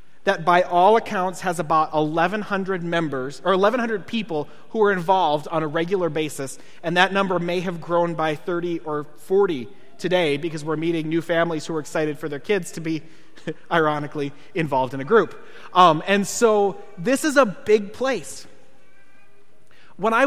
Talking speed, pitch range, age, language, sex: 170 wpm, 160-205 Hz, 30-49, English, male